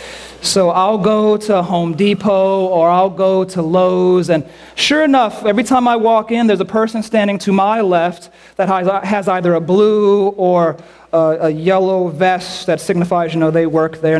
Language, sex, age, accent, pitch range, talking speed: English, male, 40-59, American, 175-220 Hz, 180 wpm